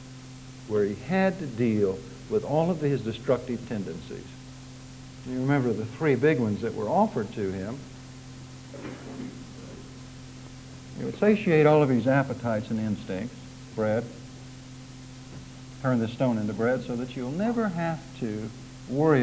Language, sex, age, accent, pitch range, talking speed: English, male, 60-79, American, 125-130 Hz, 135 wpm